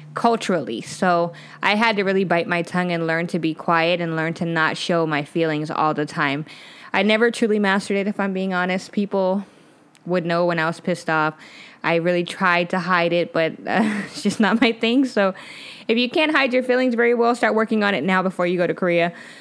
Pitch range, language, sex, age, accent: 165-205 Hz, Korean, female, 20-39, American